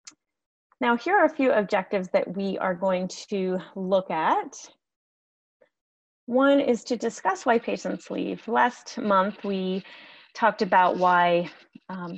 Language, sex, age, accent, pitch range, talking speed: English, female, 30-49, American, 180-235 Hz, 135 wpm